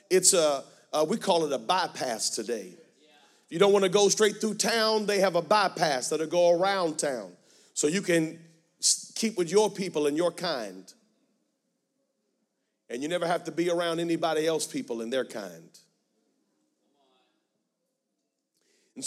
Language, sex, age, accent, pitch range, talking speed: English, male, 40-59, American, 175-225 Hz, 155 wpm